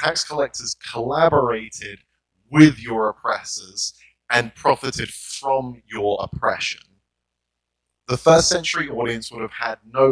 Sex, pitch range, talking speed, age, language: male, 95-145 Hz, 115 wpm, 30-49, English